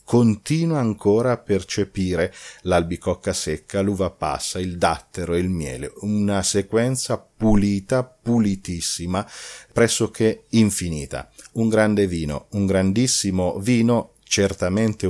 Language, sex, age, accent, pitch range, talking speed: Italian, male, 40-59, native, 85-110 Hz, 105 wpm